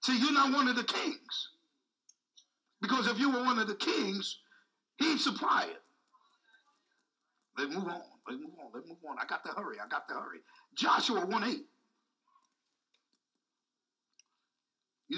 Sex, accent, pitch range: male, American, 225-330 Hz